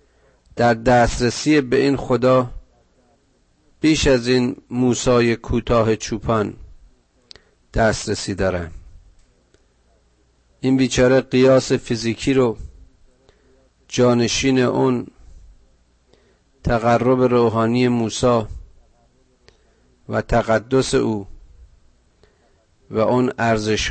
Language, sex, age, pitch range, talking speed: Persian, male, 50-69, 85-125 Hz, 75 wpm